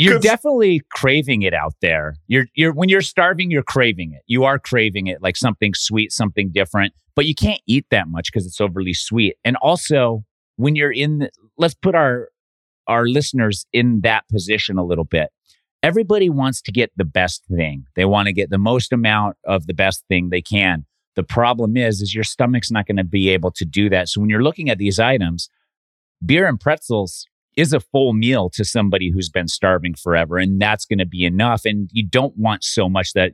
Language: English